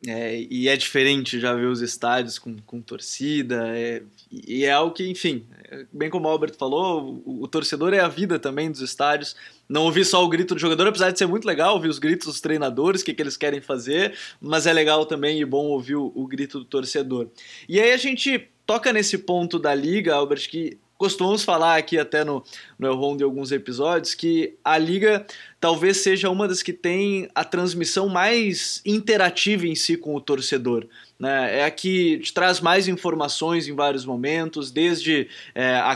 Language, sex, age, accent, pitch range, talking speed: Portuguese, male, 20-39, Brazilian, 145-185 Hz, 190 wpm